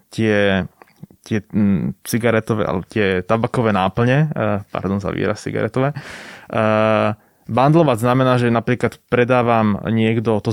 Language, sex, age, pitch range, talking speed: Slovak, male, 20-39, 100-115 Hz, 105 wpm